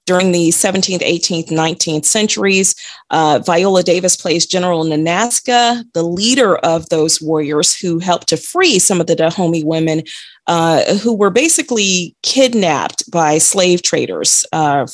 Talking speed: 140 wpm